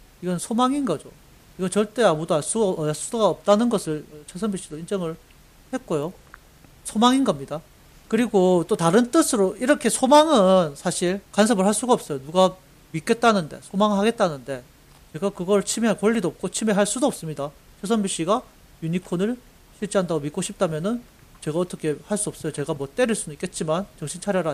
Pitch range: 165-235 Hz